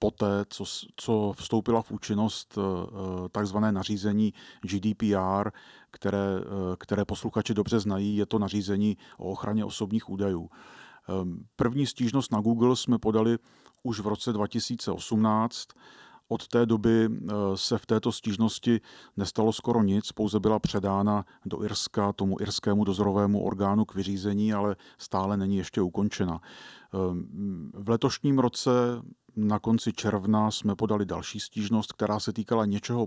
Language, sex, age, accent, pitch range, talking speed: Czech, male, 40-59, native, 100-110 Hz, 130 wpm